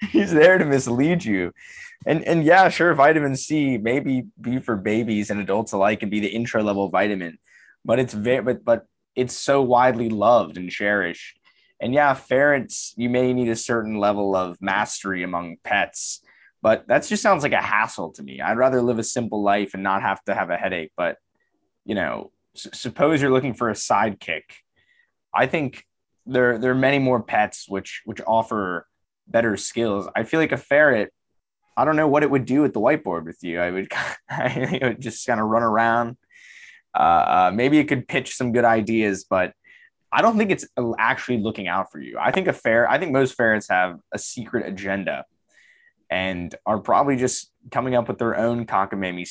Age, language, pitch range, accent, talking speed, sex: 20-39, English, 100-135 Hz, American, 195 wpm, male